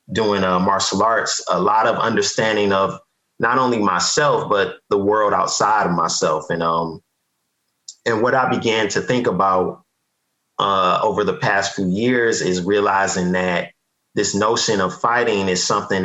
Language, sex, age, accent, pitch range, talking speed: English, male, 30-49, American, 90-105 Hz, 155 wpm